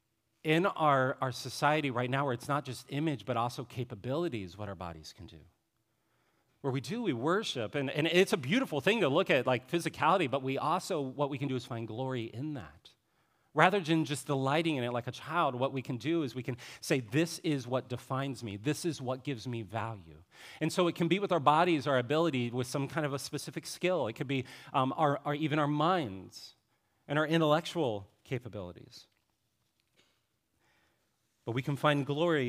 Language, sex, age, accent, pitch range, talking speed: English, male, 40-59, American, 120-150 Hz, 205 wpm